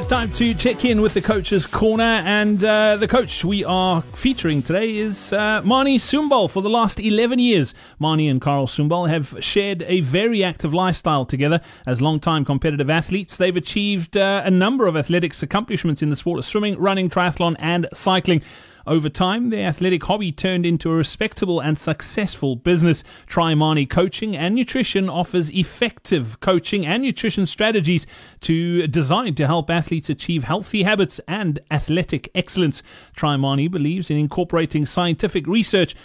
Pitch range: 155-200 Hz